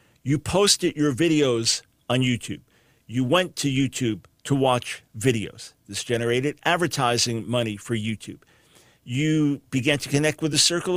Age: 50-69